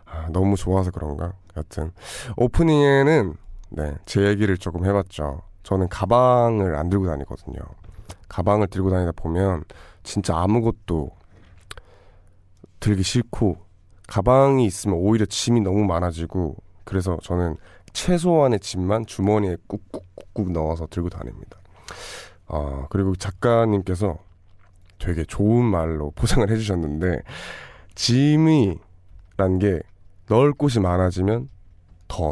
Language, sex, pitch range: Korean, male, 85-105 Hz